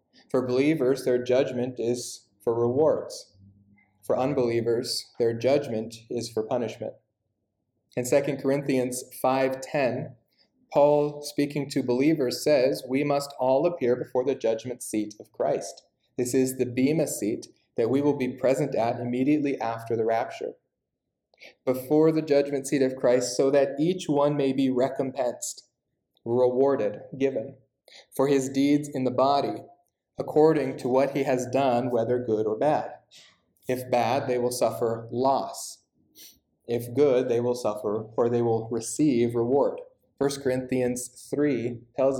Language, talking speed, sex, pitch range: English, 140 wpm, male, 120-140 Hz